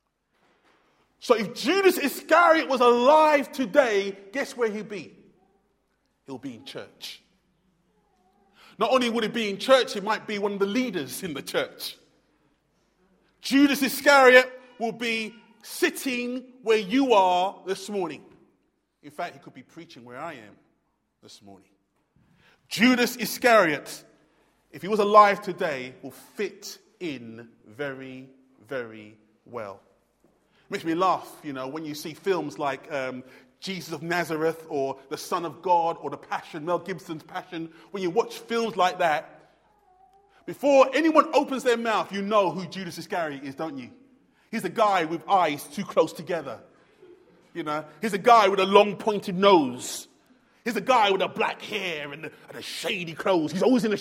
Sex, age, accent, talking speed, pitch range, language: male, 30-49, British, 160 wpm, 165-260 Hz, English